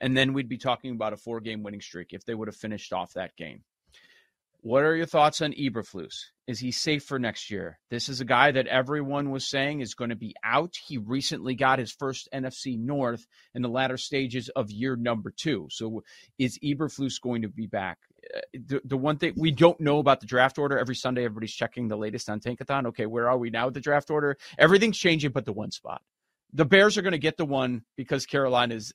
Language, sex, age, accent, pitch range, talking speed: English, male, 40-59, American, 120-165 Hz, 230 wpm